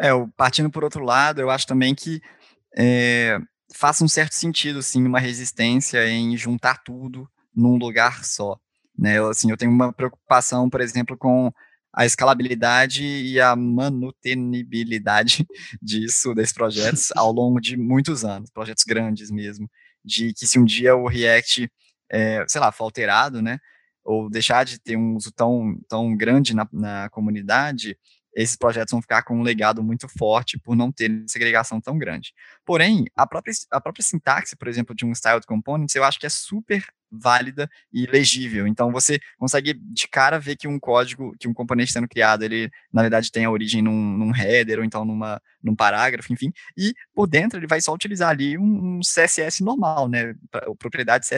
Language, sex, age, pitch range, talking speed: Portuguese, male, 20-39, 115-145 Hz, 175 wpm